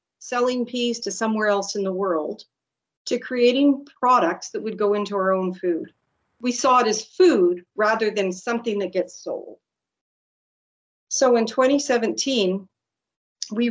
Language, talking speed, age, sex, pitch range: English, 145 wpm, 50-69, female, 195-245 Hz